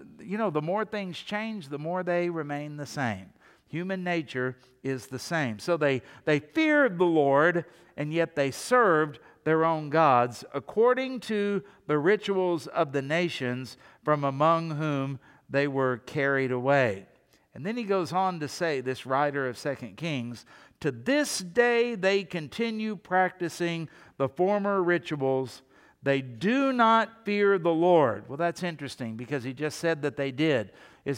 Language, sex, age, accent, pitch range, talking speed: English, male, 60-79, American, 140-190 Hz, 160 wpm